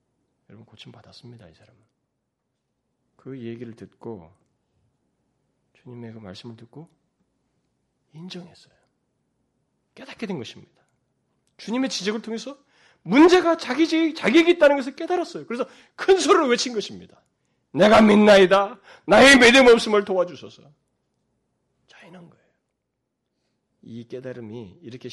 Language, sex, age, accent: Korean, male, 40-59, native